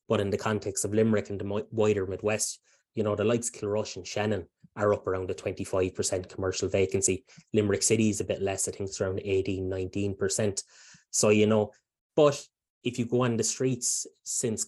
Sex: male